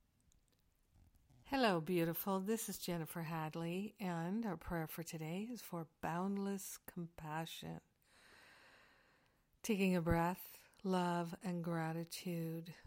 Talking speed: 100 wpm